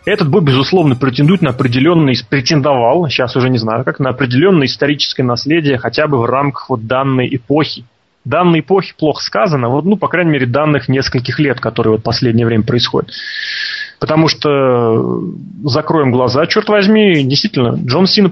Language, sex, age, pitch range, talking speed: Russian, male, 20-39, 125-170 Hz, 160 wpm